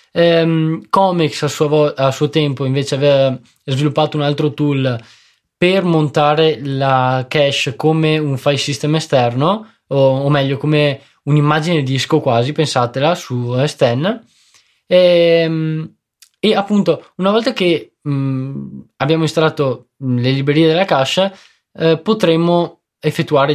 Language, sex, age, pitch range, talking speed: Italian, male, 20-39, 135-175 Hz, 125 wpm